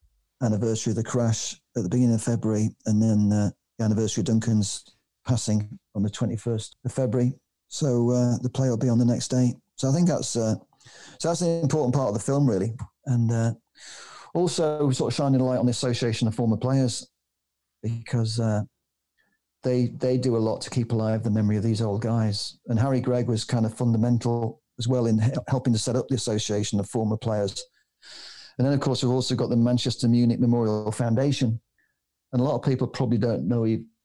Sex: male